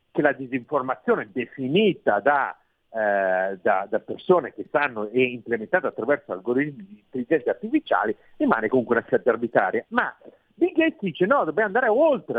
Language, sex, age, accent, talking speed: Italian, male, 50-69, native, 145 wpm